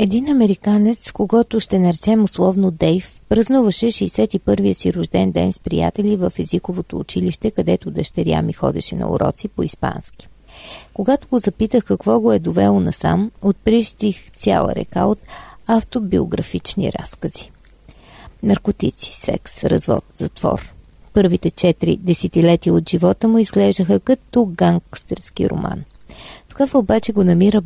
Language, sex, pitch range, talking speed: Bulgarian, female, 180-215 Hz, 120 wpm